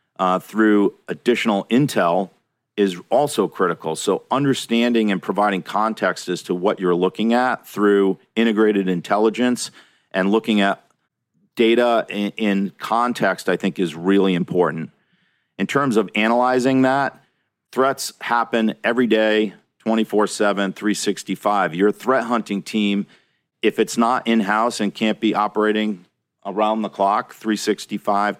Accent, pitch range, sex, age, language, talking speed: American, 100-115 Hz, male, 40-59, English, 125 wpm